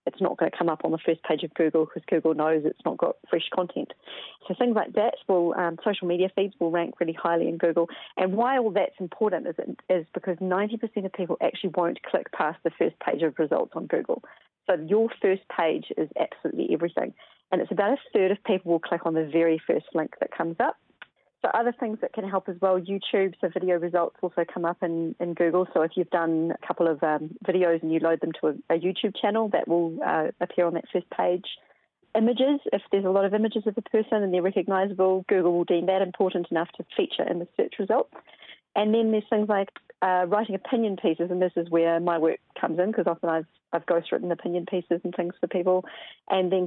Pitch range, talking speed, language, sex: 170-200 Hz, 230 wpm, English, female